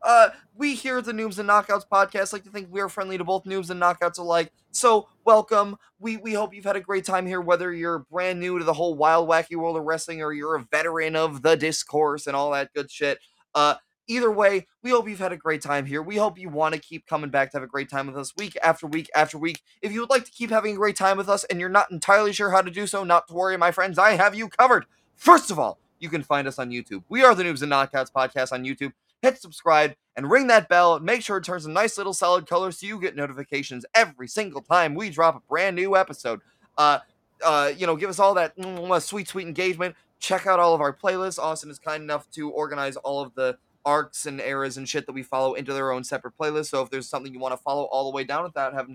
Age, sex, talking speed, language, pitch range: 20-39, male, 265 wpm, English, 145-195 Hz